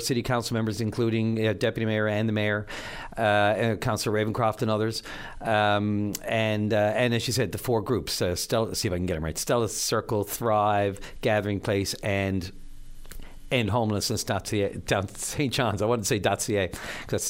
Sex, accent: male, American